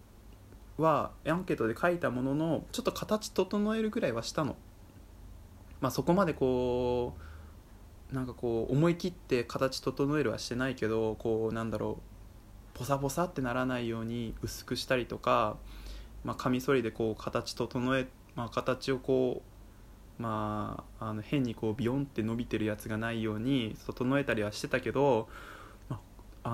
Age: 20-39